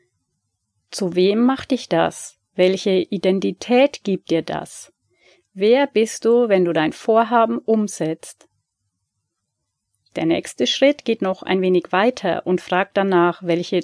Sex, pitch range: female, 175-230 Hz